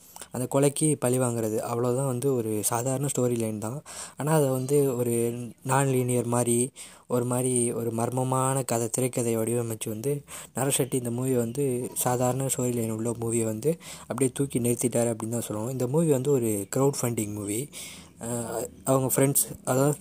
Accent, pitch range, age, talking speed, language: native, 115-135 Hz, 20-39, 155 wpm, Tamil